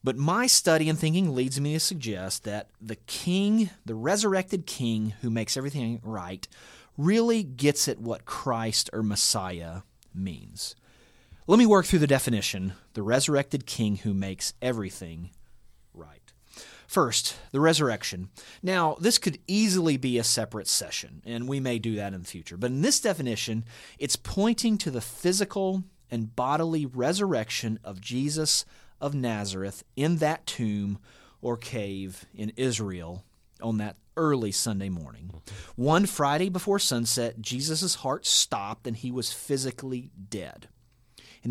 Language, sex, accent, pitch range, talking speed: English, male, American, 105-150 Hz, 145 wpm